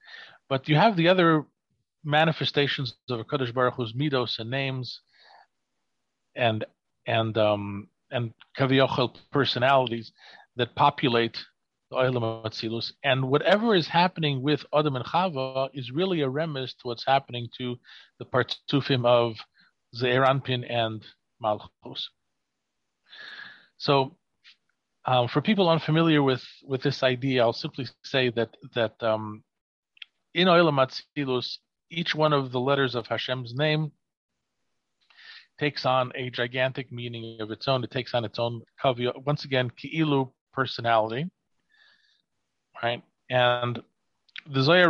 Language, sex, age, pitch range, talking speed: English, male, 40-59, 120-145 Hz, 120 wpm